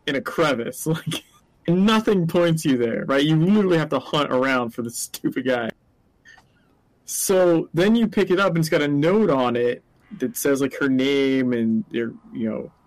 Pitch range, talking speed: 125-160 Hz, 195 wpm